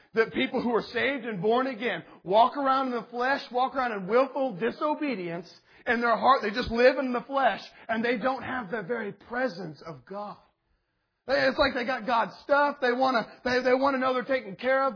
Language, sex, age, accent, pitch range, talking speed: English, male, 40-59, American, 230-275 Hz, 200 wpm